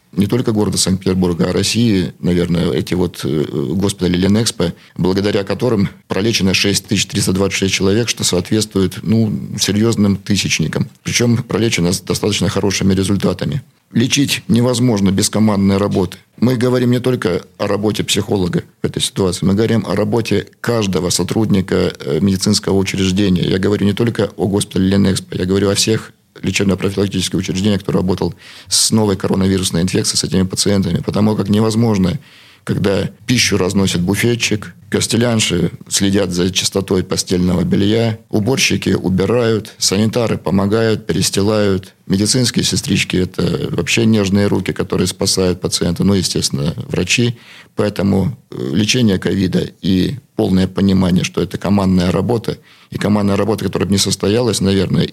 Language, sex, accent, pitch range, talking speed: Russian, male, native, 95-110 Hz, 135 wpm